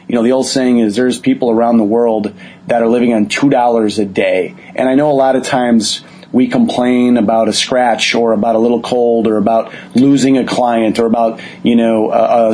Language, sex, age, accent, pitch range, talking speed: English, male, 30-49, American, 115-135 Hz, 225 wpm